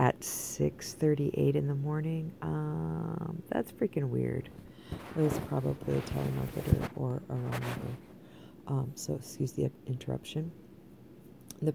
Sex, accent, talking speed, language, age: female, American, 125 wpm, English, 40-59